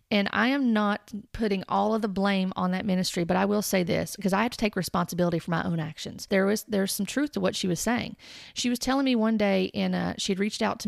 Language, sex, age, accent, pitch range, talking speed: English, female, 40-59, American, 180-215 Hz, 270 wpm